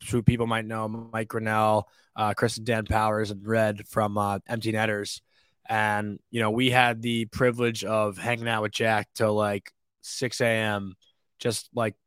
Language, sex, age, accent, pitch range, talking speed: English, male, 20-39, American, 105-120 Hz, 175 wpm